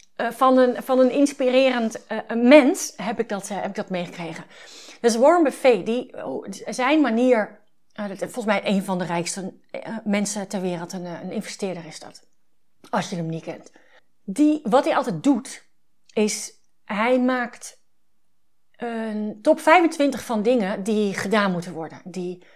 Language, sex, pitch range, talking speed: Dutch, female, 195-255 Hz, 160 wpm